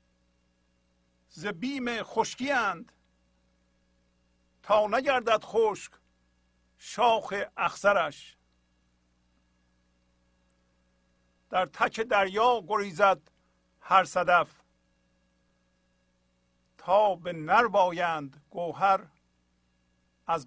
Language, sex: Persian, male